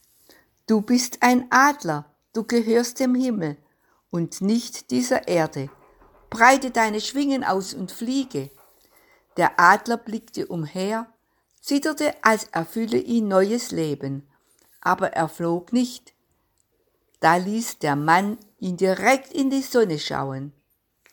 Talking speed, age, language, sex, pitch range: 120 wpm, 60-79, German, female, 155-235 Hz